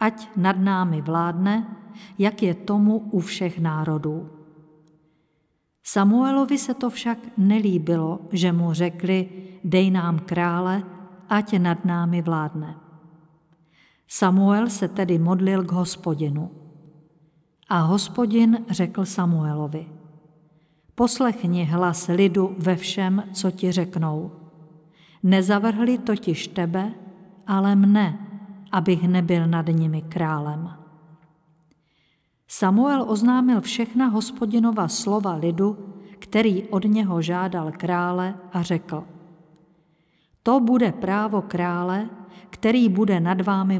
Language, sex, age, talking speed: Czech, female, 50-69, 100 wpm